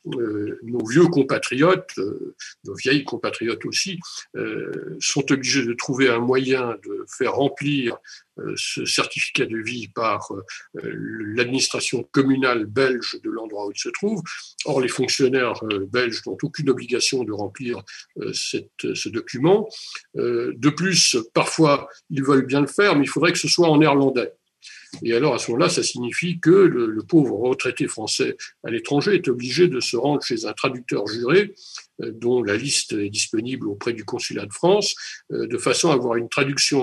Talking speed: 155 wpm